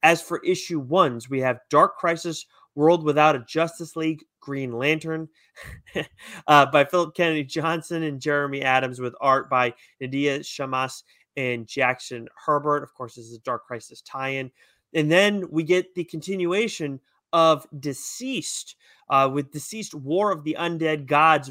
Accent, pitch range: American, 135-170 Hz